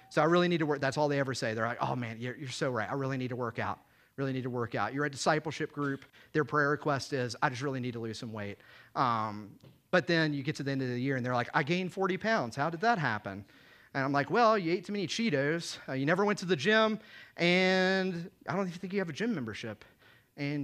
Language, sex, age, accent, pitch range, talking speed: English, male, 30-49, American, 135-220 Hz, 275 wpm